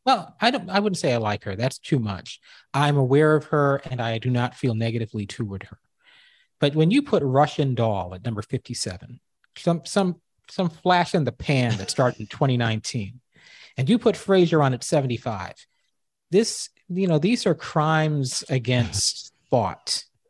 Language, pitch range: English, 115-160 Hz